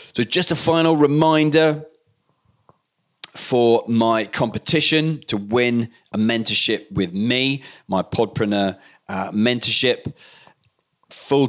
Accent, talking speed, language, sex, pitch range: British, 100 wpm, English, male, 95-120 Hz